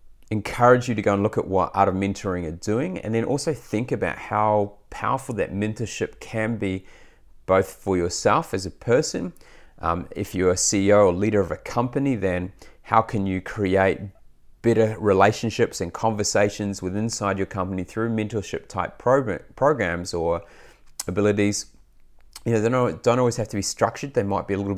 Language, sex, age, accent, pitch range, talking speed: English, male, 30-49, Australian, 95-115 Hz, 175 wpm